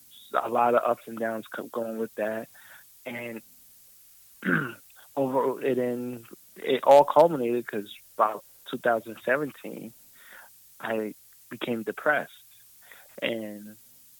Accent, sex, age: American, male, 20-39